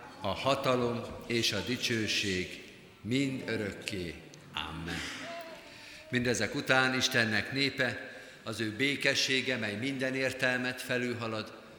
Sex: male